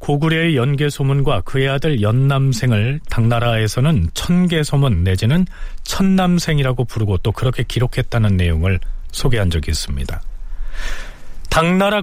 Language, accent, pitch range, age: Korean, native, 100-165 Hz, 40-59